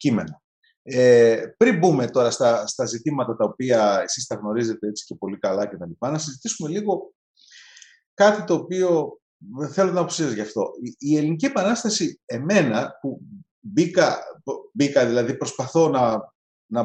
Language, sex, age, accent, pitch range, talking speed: Greek, male, 30-49, native, 125-195 Hz, 150 wpm